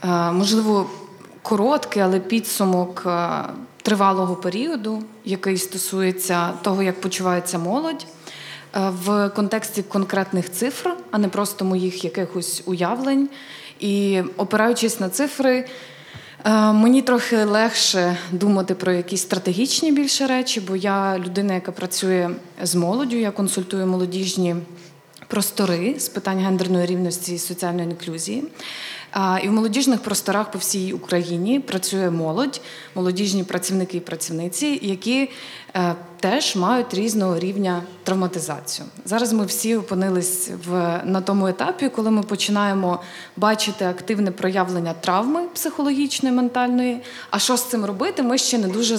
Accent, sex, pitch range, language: native, female, 185-230 Hz, Ukrainian